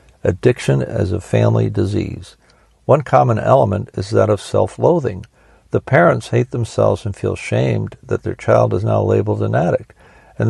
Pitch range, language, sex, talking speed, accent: 105-120 Hz, English, male, 160 wpm, American